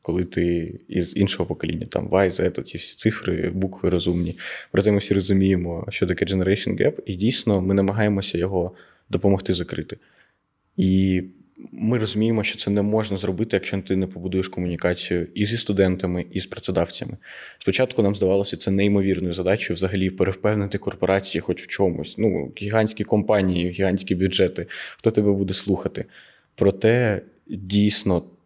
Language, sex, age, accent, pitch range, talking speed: Ukrainian, male, 20-39, native, 90-100 Hz, 150 wpm